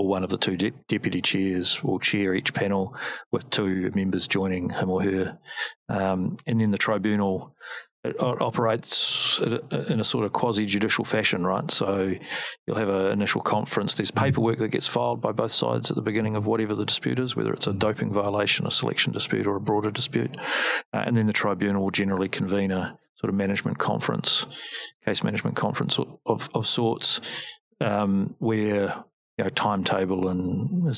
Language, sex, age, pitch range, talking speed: English, male, 40-59, 95-115 Hz, 180 wpm